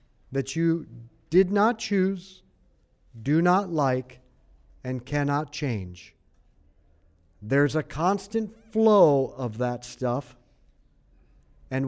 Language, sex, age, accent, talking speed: English, male, 50-69, American, 95 wpm